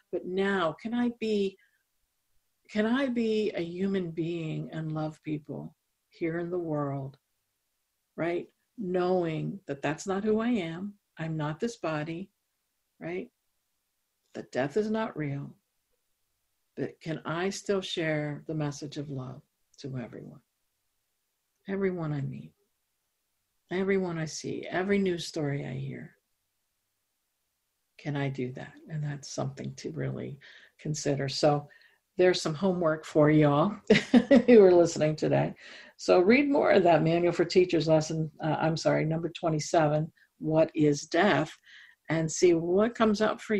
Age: 60-79